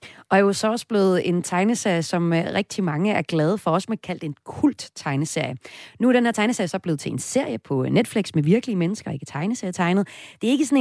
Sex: female